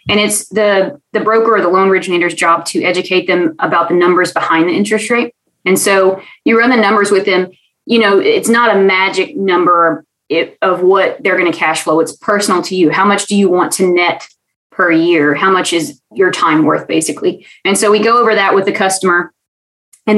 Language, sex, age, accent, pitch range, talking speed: English, female, 20-39, American, 175-210 Hz, 215 wpm